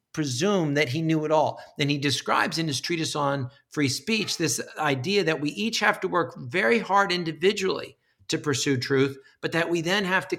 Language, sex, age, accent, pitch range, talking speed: English, male, 50-69, American, 125-155 Hz, 200 wpm